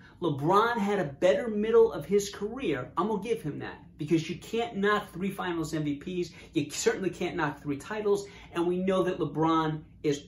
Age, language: 30-49, English